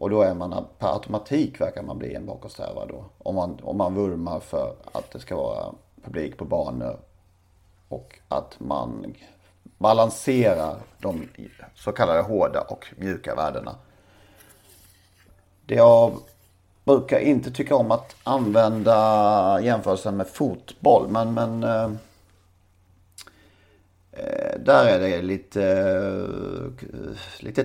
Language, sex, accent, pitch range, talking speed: Swedish, male, native, 95-115 Hz, 115 wpm